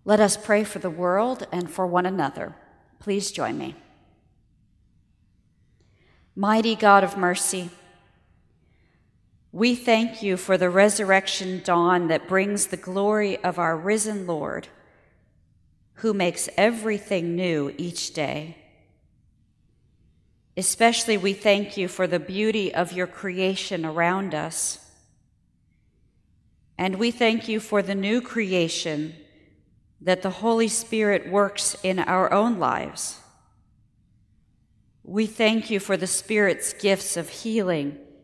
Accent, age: American, 50-69